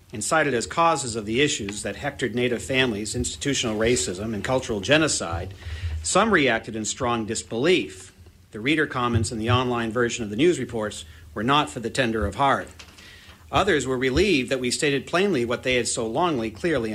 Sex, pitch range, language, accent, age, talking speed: male, 95-135 Hz, English, American, 50-69, 185 wpm